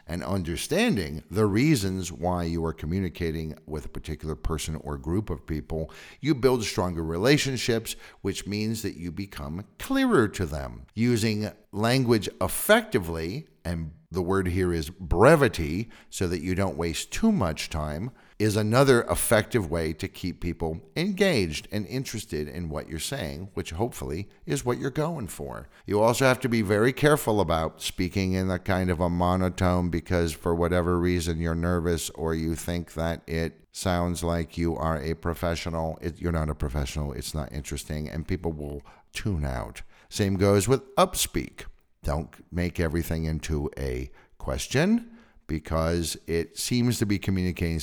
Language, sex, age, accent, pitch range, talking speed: English, male, 50-69, American, 80-110 Hz, 160 wpm